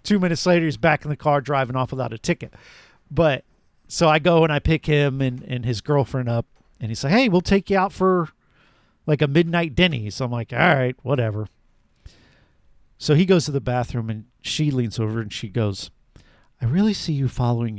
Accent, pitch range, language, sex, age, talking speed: American, 120-170 Hz, English, male, 50-69, 215 wpm